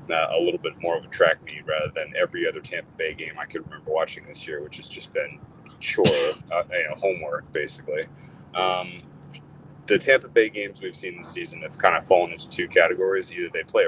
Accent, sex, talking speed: American, male, 220 wpm